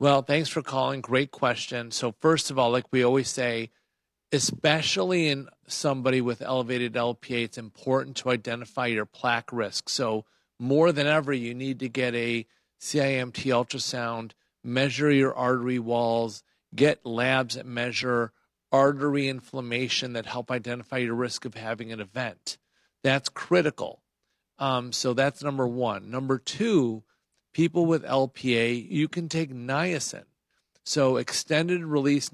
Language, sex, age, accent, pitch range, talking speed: English, male, 40-59, American, 120-140 Hz, 140 wpm